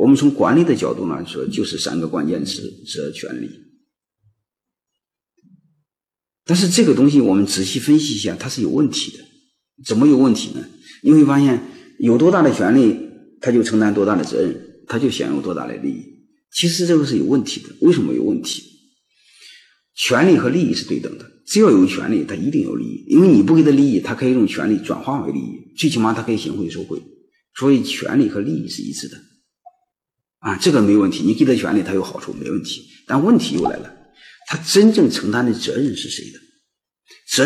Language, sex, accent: Chinese, male, native